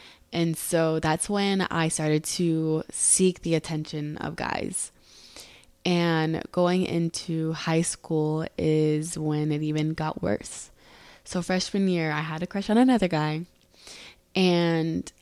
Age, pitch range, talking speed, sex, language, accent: 20-39, 155-180 Hz, 135 wpm, female, English, American